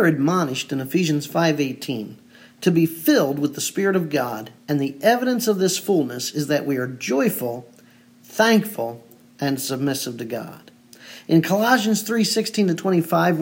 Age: 50-69